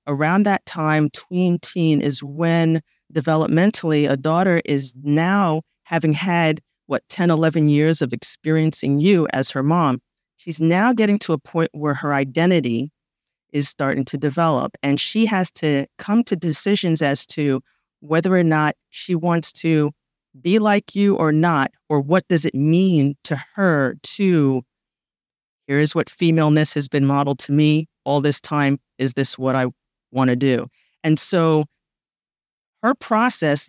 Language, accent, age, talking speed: English, American, 40-59, 155 wpm